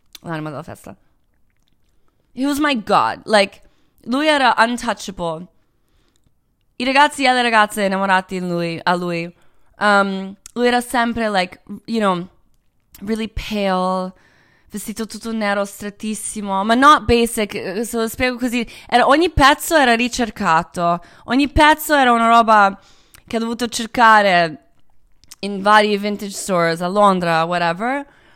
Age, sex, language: 20-39, female, Italian